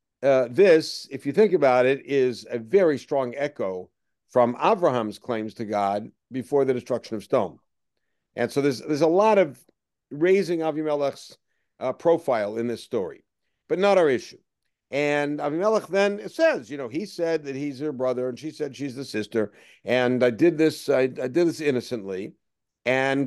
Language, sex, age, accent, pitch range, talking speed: English, male, 50-69, American, 130-160 Hz, 175 wpm